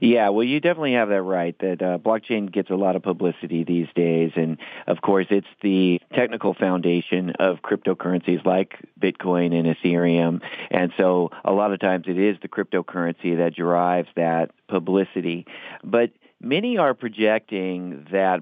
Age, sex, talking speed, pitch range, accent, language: 40-59, male, 160 wpm, 90-100 Hz, American, English